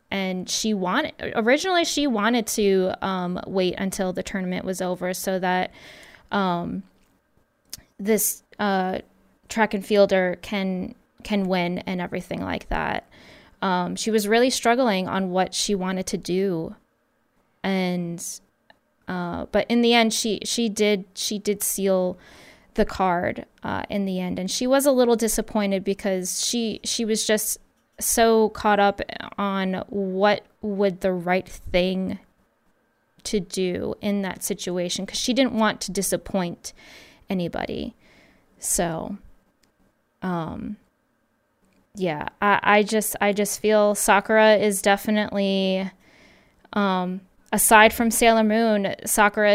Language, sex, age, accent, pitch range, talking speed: English, female, 20-39, American, 185-215 Hz, 130 wpm